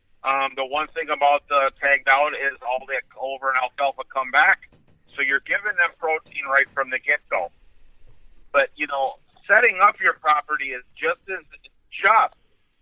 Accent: American